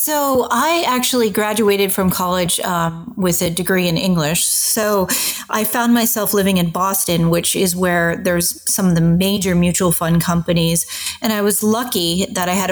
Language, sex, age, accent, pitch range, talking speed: English, female, 30-49, American, 170-205 Hz, 175 wpm